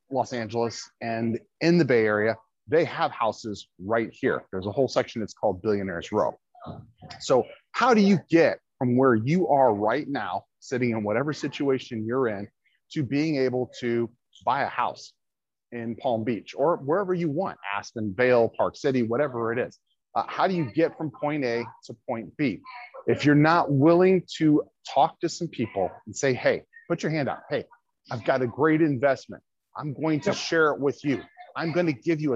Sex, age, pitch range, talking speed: male, 30-49, 115-155 Hz, 195 wpm